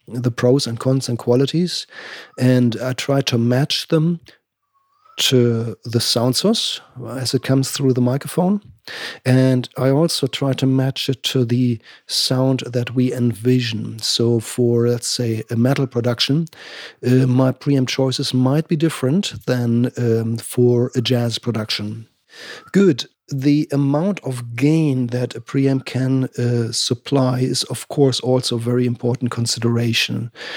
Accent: German